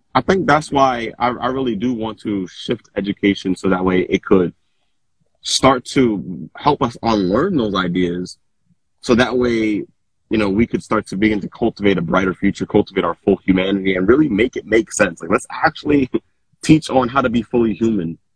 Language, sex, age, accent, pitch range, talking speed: English, male, 20-39, American, 90-110 Hz, 195 wpm